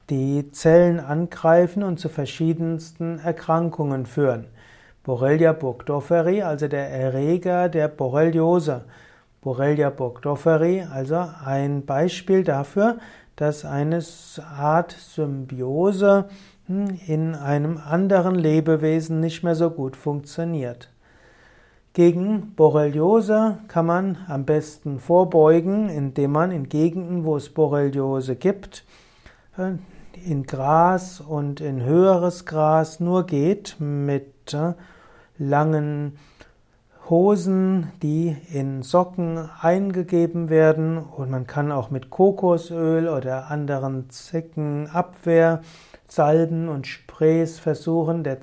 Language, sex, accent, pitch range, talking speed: German, male, German, 145-175 Hz, 100 wpm